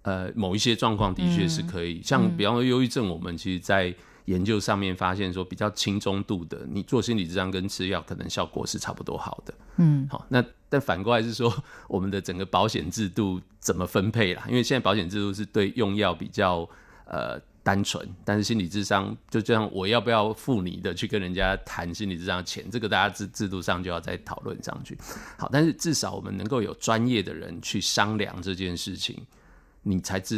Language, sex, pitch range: Chinese, male, 90-110 Hz